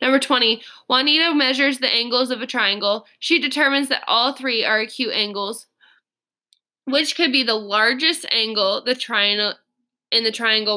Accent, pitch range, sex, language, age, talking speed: American, 210-260 Hz, female, English, 20-39, 145 wpm